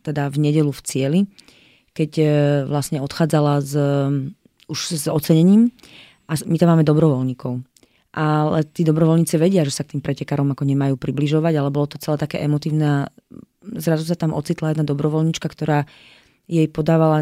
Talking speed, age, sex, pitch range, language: 155 wpm, 30-49, female, 150-165 Hz, Slovak